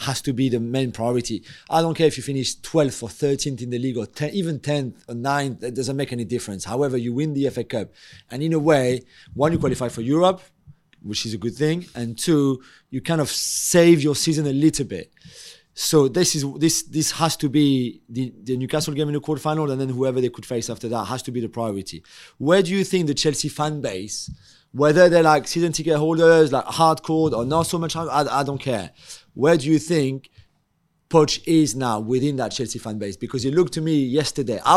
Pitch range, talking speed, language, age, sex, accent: 130-160 Hz, 230 wpm, English, 30-49, male, French